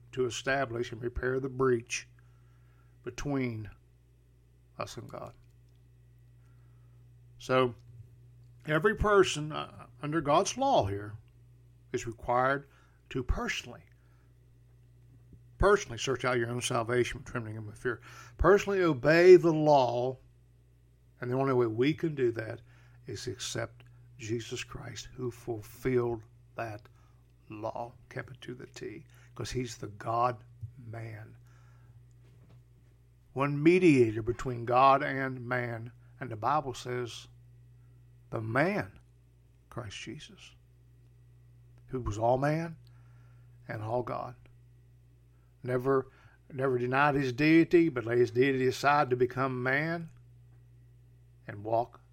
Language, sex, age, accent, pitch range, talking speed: English, male, 60-79, American, 120-125 Hz, 110 wpm